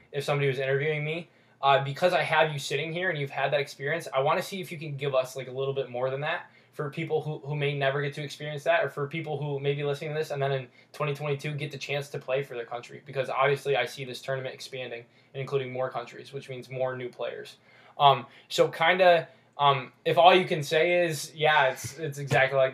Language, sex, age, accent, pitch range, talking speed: English, male, 10-29, American, 125-150 Hz, 255 wpm